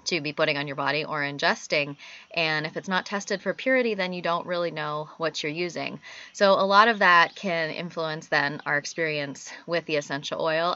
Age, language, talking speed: 20-39, English, 205 wpm